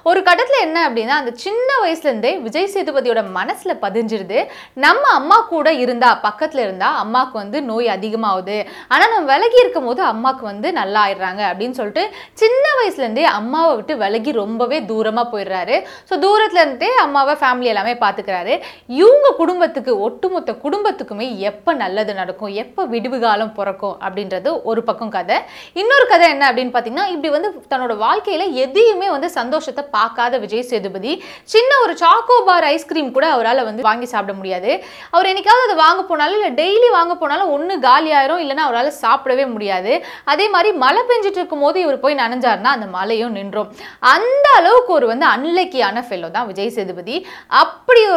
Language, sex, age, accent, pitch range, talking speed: Tamil, female, 20-39, native, 225-355 Hz, 90 wpm